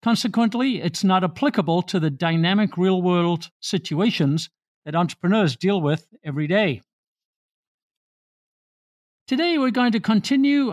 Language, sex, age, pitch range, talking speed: English, male, 50-69, 165-215 Hz, 110 wpm